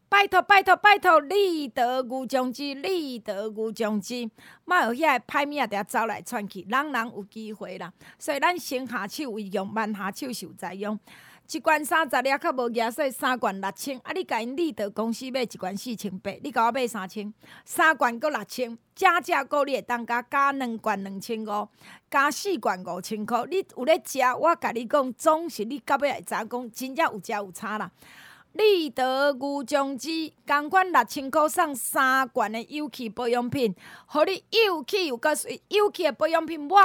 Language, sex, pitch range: Chinese, female, 230-320 Hz